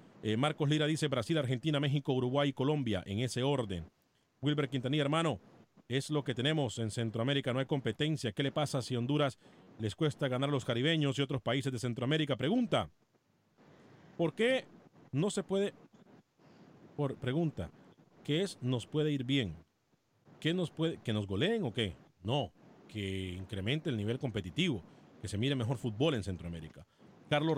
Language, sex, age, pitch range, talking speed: Spanish, male, 40-59, 115-150 Hz, 165 wpm